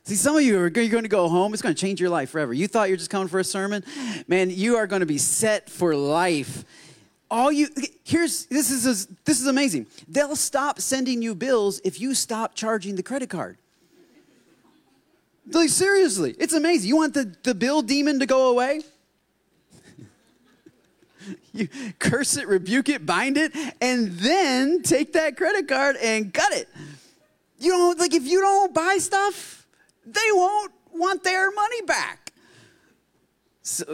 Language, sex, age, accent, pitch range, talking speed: English, male, 30-49, American, 180-290 Hz, 175 wpm